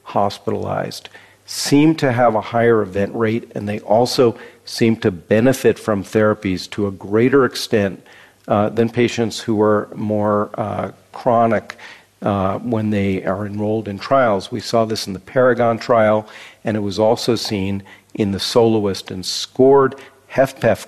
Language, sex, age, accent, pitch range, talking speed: English, male, 50-69, American, 100-115 Hz, 150 wpm